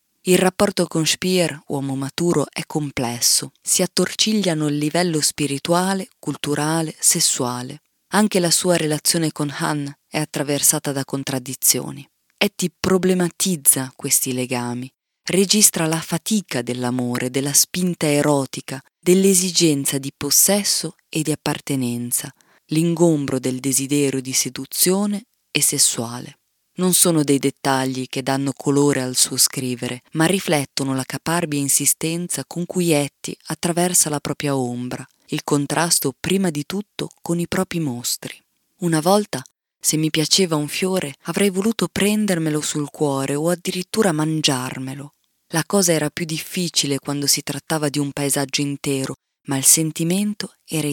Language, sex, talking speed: Italian, female, 130 wpm